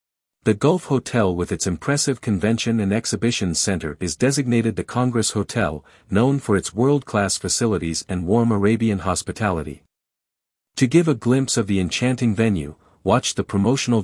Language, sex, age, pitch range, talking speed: English, male, 50-69, 90-120 Hz, 150 wpm